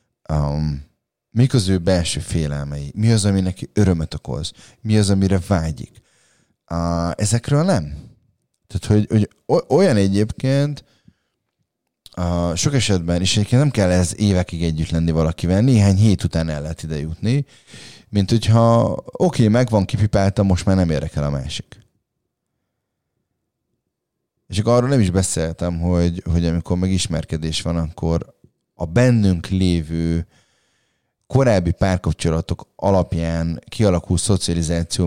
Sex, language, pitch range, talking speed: male, Hungarian, 85-105 Hz, 130 wpm